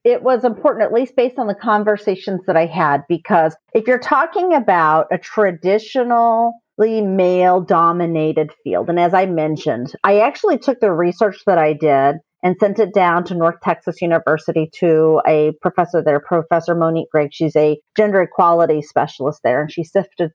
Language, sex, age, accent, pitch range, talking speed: English, female, 40-59, American, 165-215 Hz, 170 wpm